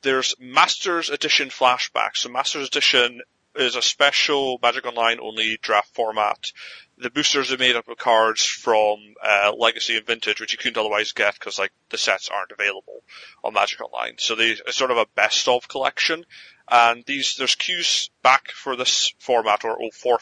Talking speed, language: 180 wpm, English